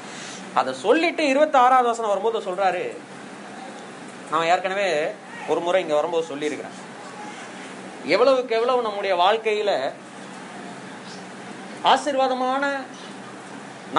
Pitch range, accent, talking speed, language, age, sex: 215-290 Hz, native, 85 wpm, Tamil, 30-49, male